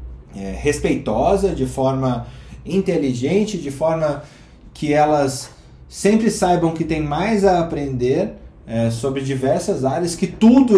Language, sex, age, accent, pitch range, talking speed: Portuguese, male, 20-39, Brazilian, 125-160 Hz, 110 wpm